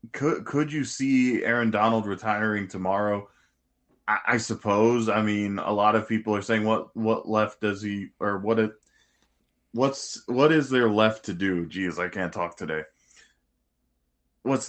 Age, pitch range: 20-39, 100-120 Hz